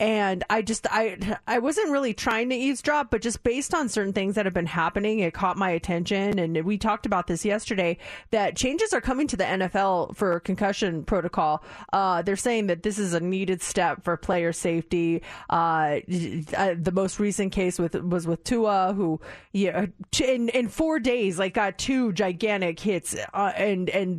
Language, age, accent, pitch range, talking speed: English, 30-49, American, 175-220 Hz, 185 wpm